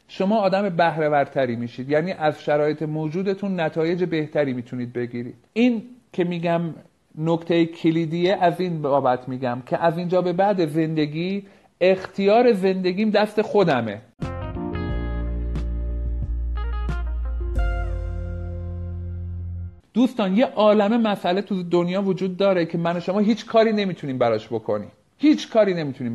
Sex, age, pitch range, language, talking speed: male, 50-69, 135-200 Hz, Persian, 115 wpm